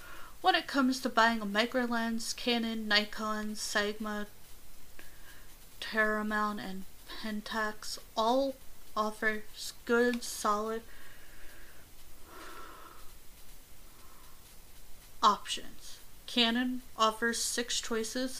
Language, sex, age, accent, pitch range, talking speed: English, female, 30-49, American, 210-235 Hz, 75 wpm